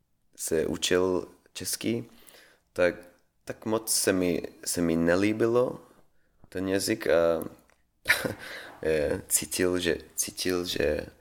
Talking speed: 95 wpm